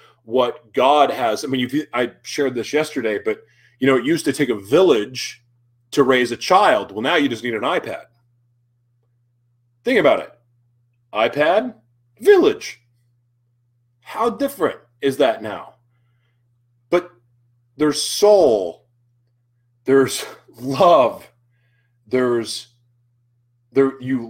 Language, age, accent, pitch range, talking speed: English, 30-49, American, 120-130 Hz, 120 wpm